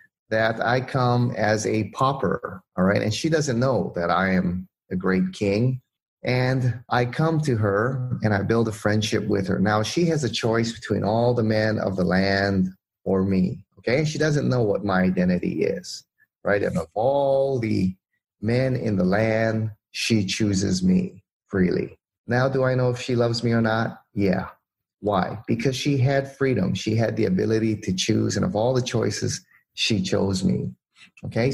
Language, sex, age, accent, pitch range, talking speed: English, male, 30-49, American, 100-125 Hz, 185 wpm